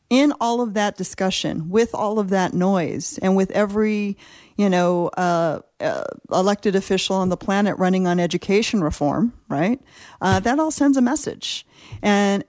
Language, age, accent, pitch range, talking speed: English, 40-59, American, 180-215 Hz, 165 wpm